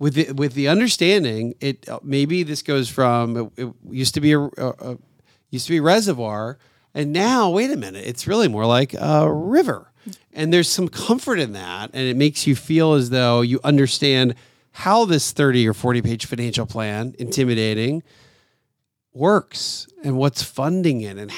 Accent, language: American, English